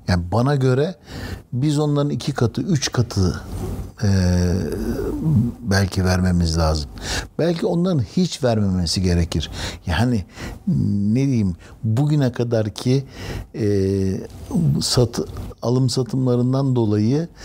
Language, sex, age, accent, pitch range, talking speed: Turkish, male, 60-79, native, 95-125 Hz, 100 wpm